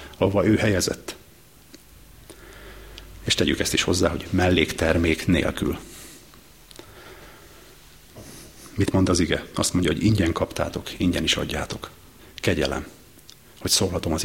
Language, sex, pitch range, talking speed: Hungarian, male, 80-100 Hz, 115 wpm